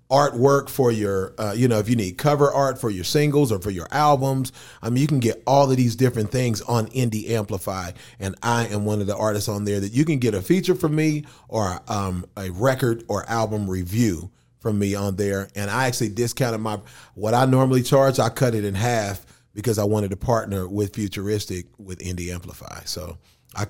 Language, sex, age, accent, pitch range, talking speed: English, male, 30-49, American, 105-130 Hz, 215 wpm